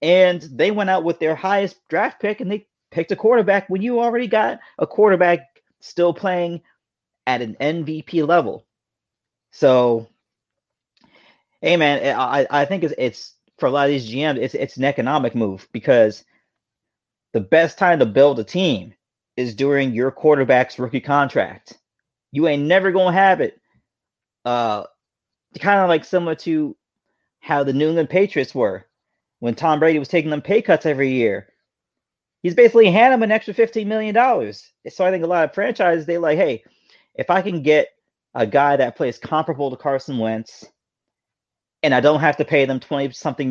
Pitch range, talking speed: 115-175 Hz, 175 wpm